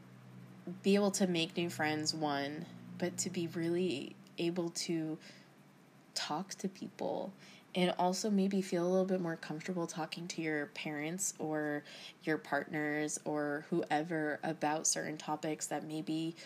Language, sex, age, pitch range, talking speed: English, female, 20-39, 155-185 Hz, 140 wpm